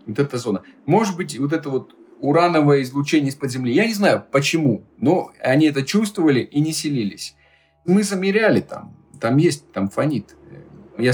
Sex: male